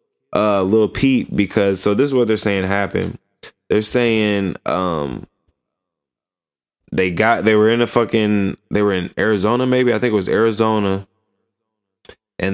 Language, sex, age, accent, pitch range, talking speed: English, male, 10-29, American, 95-110 Hz, 155 wpm